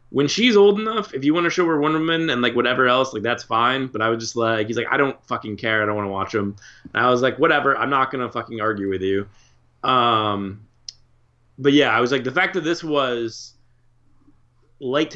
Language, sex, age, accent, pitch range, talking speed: English, male, 20-39, American, 115-150 Hz, 240 wpm